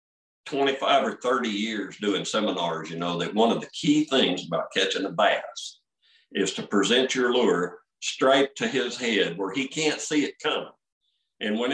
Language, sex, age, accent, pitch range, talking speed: English, male, 50-69, American, 105-150 Hz, 180 wpm